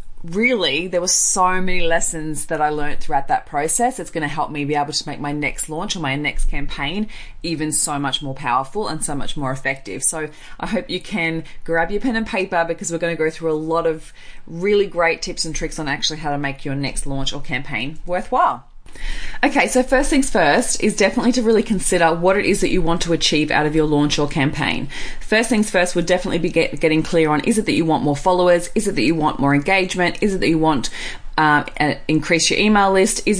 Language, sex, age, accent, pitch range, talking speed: English, female, 20-39, Australian, 150-185 Hz, 235 wpm